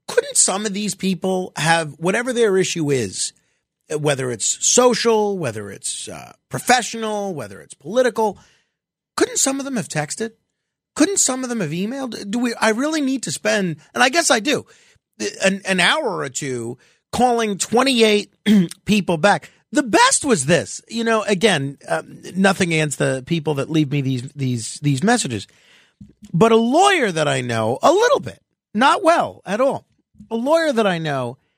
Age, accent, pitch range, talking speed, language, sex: 40-59, American, 165-240 Hz, 170 wpm, English, male